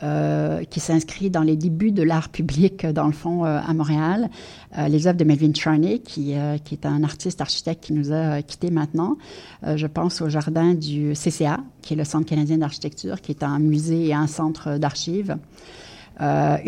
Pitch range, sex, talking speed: 150-170 Hz, female, 200 wpm